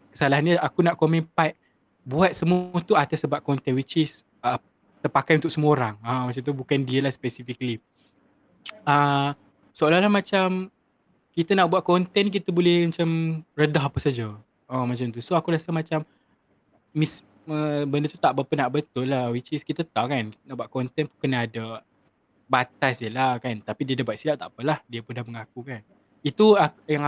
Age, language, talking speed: 20-39, Malay, 190 wpm